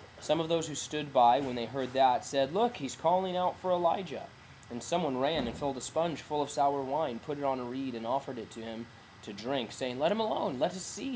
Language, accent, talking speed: English, American, 255 wpm